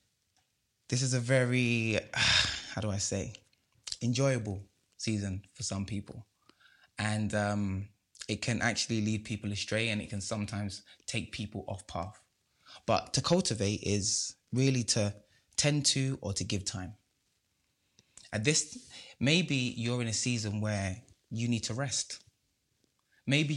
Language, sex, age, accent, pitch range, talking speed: English, male, 20-39, British, 100-125 Hz, 135 wpm